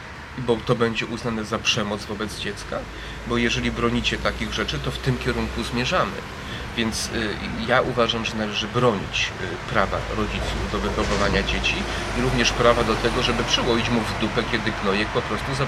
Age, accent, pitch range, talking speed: 30-49, native, 105-120 Hz, 170 wpm